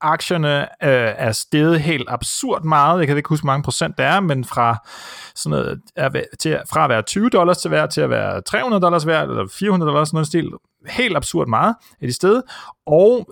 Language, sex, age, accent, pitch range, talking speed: Danish, male, 30-49, native, 120-170 Hz, 210 wpm